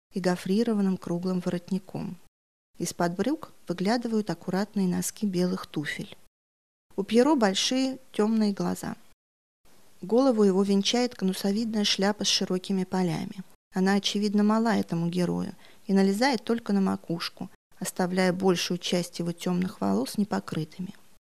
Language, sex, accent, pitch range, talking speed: Russian, female, native, 180-210 Hz, 115 wpm